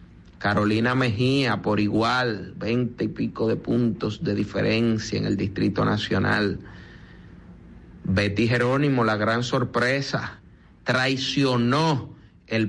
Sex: male